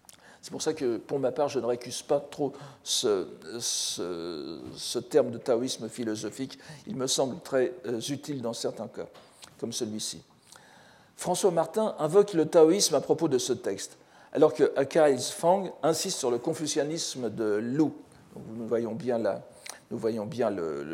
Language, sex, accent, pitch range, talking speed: French, male, French, 120-175 Hz, 165 wpm